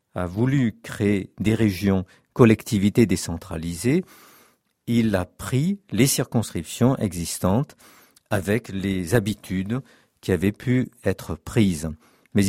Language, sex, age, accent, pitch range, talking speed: French, male, 50-69, French, 95-125 Hz, 105 wpm